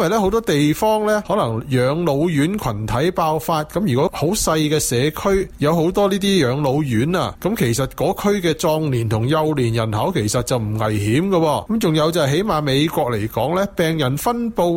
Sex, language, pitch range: male, Chinese, 120-180 Hz